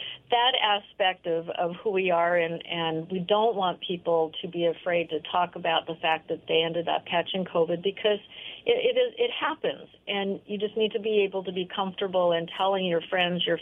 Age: 40-59